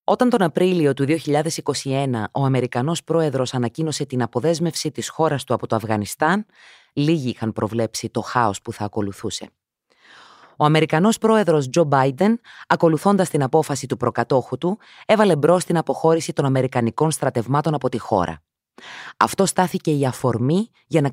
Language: Greek